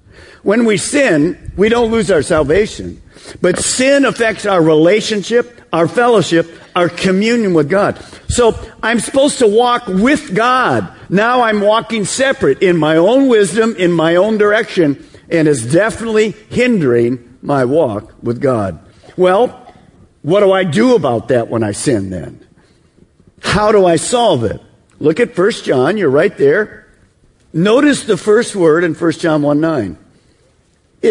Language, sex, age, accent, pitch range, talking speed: English, male, 50-69, American, 155-225 Hz, 150 wpm